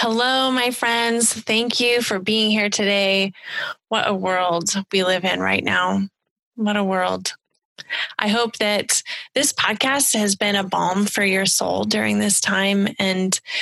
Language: English